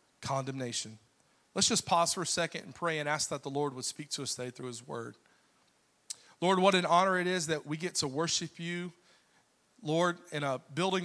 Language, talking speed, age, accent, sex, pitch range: English, 205 wpm, 40-59, American, male, 145-180 Hz